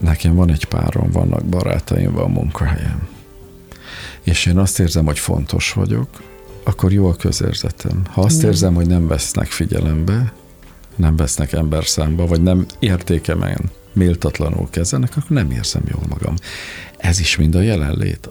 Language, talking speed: Hungarian, 145 wpm